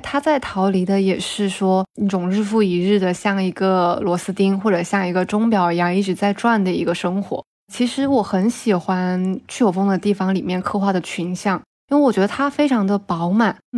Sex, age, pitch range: female, 20-39, 190-230 Hz